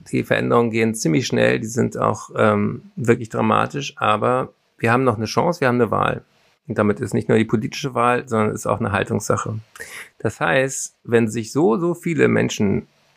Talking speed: 190 wpm